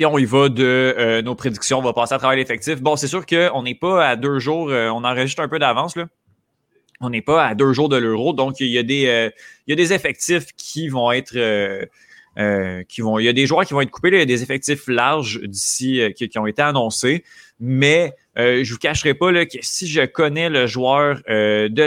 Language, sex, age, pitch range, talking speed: French, male, 20-39, 115-150 Hz, 240 wpm